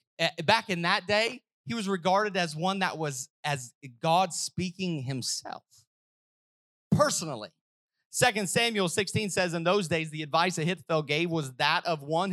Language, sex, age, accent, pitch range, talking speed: English, male, 30-49, American, 170-225 Hz, 150 wpm